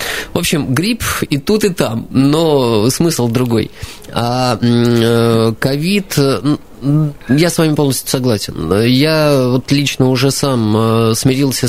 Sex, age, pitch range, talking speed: male, 20-39, 115-140 Hz, 120 wpm